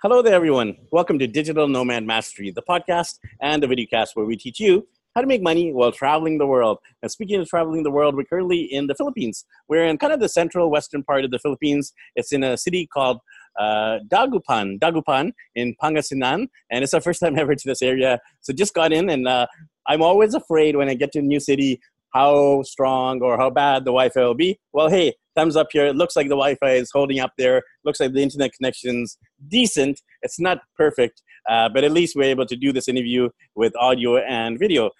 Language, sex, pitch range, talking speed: English, male, 125-165 Hz, 220 wpm